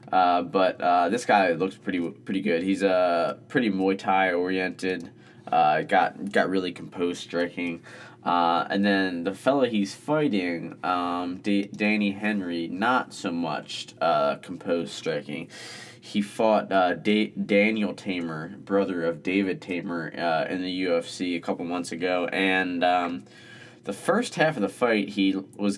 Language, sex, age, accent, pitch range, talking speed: English, male, 20-39, American, 90-105 Hz, 155 wpm